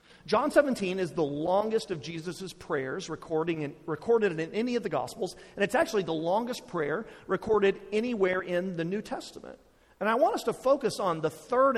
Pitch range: 170-235 Hz